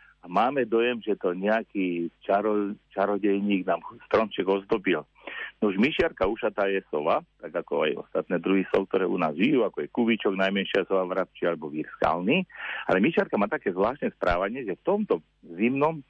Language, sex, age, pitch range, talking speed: Slovak, male, 50-69, 90-115 Hz, 170 wpm